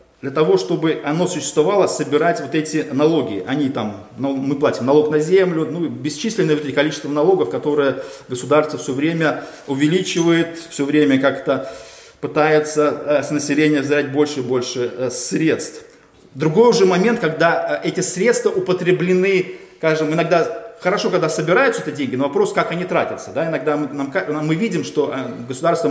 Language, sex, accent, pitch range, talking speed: Russian, male, native, 140-175 Hz, 150 wpm